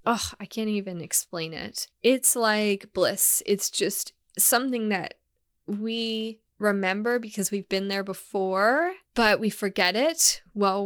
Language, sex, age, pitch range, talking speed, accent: English, female, 10-29, 190-220 Hz, 140 wpm, American